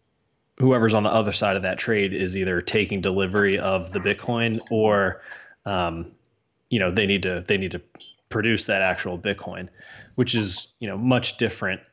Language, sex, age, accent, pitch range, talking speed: English, male, 20-39, American, 95-115 Hz, 175 wpm